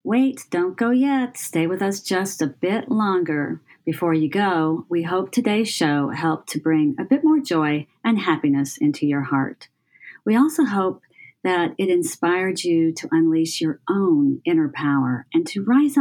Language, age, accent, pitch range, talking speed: English, 40-59, American, 155-230 Hz, 170 wpm